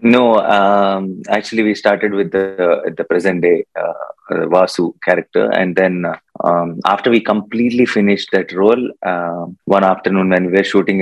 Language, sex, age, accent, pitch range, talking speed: English, male, 20-39, Indian, 90-105 Hz, 170 wpm